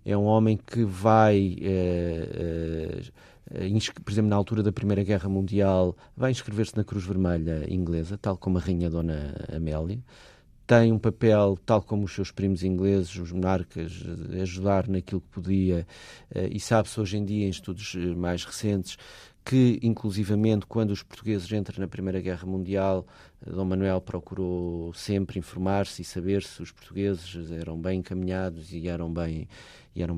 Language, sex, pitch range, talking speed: Portuguese, male, 90-105 Hz, 155 wpm